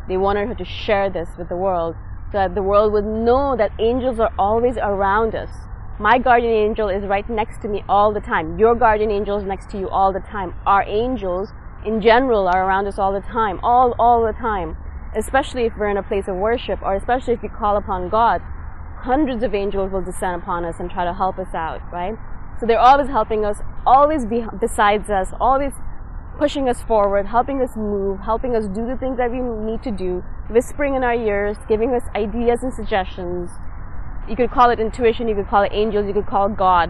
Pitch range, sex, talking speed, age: 195-240 Hz, female, 220 wpm, 20-39